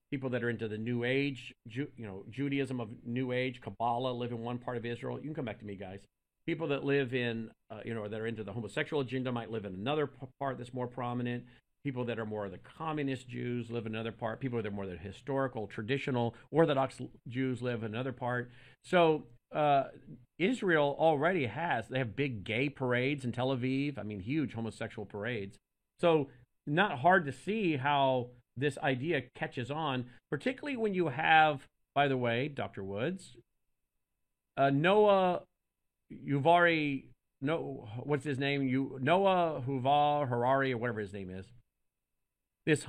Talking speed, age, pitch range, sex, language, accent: 180 wpm, 50-69, 115-145 Hz, male, English, American